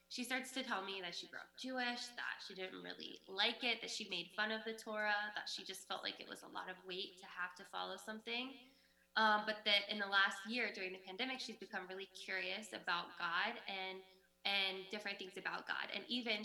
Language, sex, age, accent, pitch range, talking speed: English, female, 10-29, American, 195-245 Hz, 230 wpm